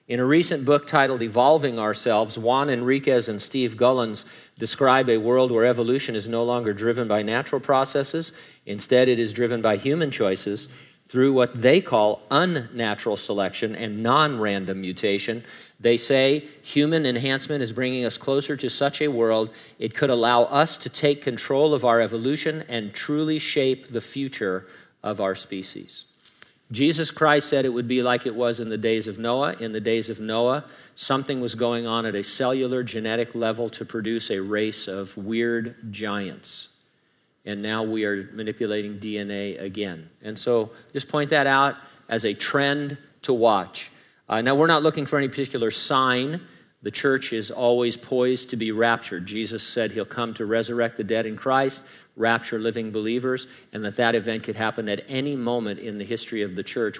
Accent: American